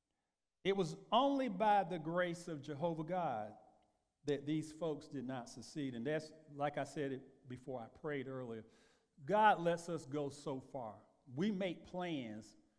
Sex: male